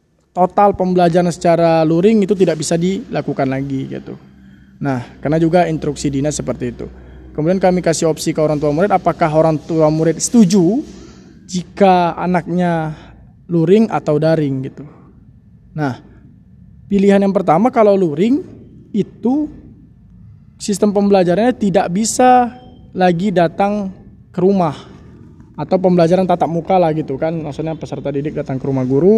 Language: Indonesian